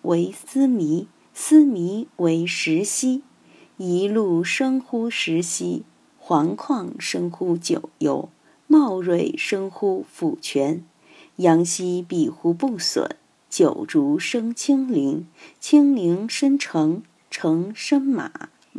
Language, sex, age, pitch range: Chinese, female, 50-69, 175-270 Hz